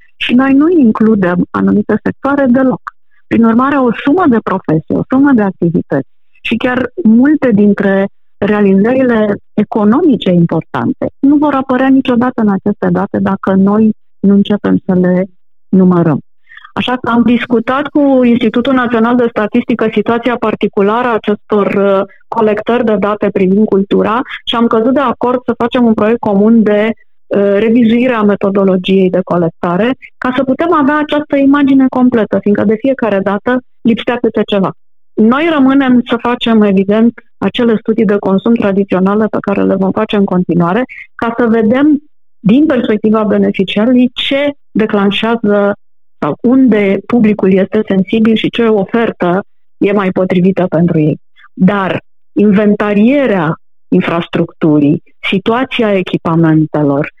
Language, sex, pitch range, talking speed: Romanian, female, 195-245 Hz, 135 wpm